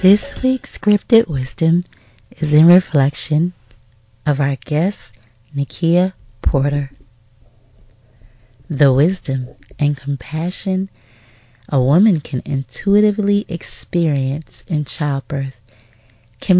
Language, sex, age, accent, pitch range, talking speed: English, female, 30-49, American, 115-160 Hz, 85 wpm